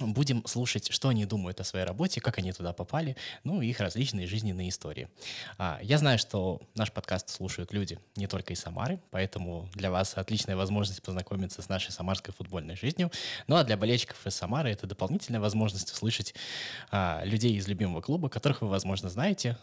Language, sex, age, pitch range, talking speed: Russian, male, 20-39, 95-120 Hz, 175 wpm